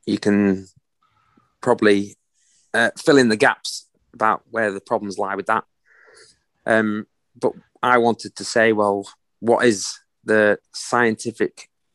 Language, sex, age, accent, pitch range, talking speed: English, male, 30-49, British, 95-110 Hz, 130 wpm